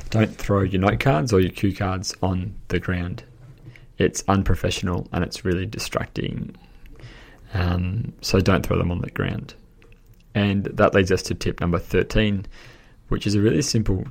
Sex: male